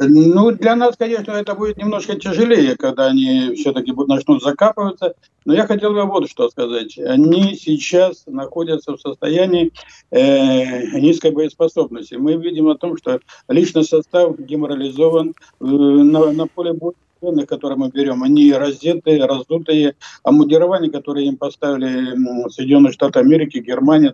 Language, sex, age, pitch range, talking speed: Russian, male, 50-69, 145-195 Hz, 135 wpm